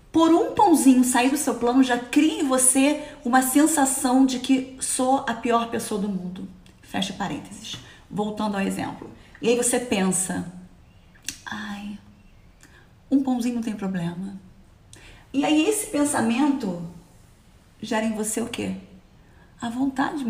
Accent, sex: Brazilian, female